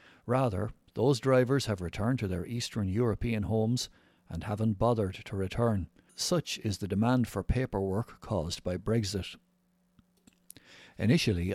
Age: 60-79